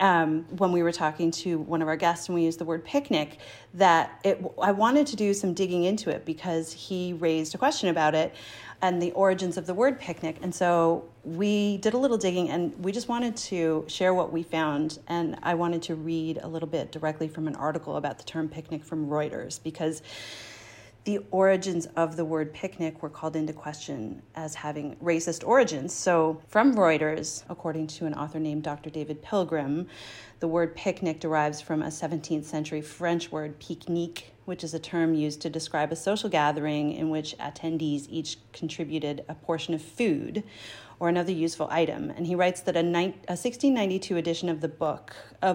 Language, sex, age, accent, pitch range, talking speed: English, female, 40-59, American, 155-175 Hz, 190 wpm